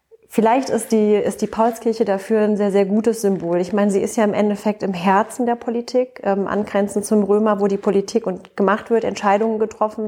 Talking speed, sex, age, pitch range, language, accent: 210 wpm, female, 30-49, 195-215 Hz, German, German